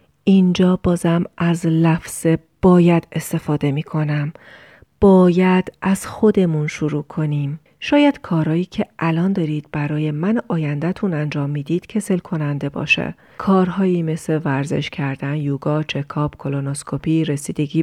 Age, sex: 40-59, female